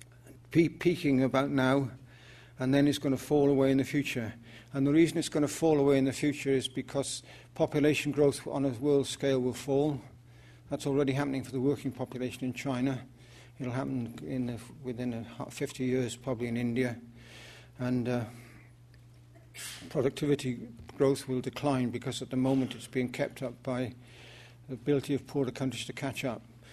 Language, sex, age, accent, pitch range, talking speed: English, male, 60-79, British, 125-140 Hz, 165 wpm